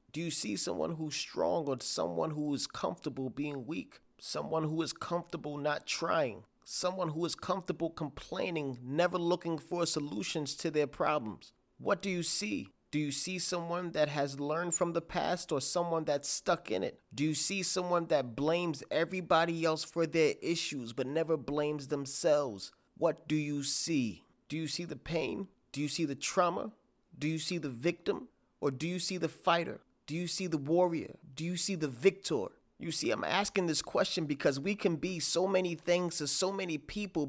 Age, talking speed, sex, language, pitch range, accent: 30-49, 190 wpm, male, English, 145-175 Hz, American